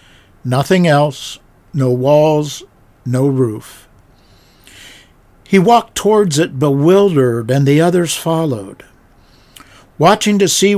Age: 60-79